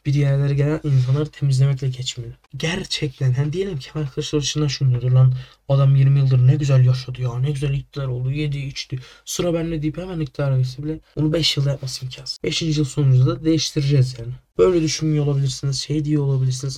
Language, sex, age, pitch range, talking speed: Turkish, male, 10-29, 130-150 Hz, 180 wpm